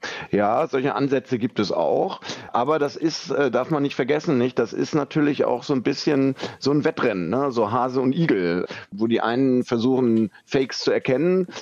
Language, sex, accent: German, male, German